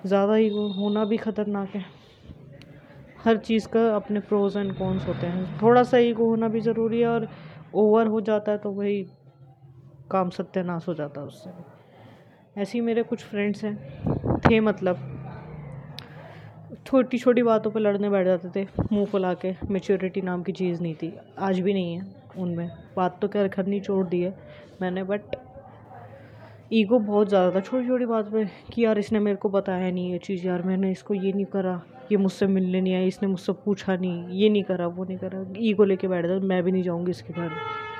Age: 20-39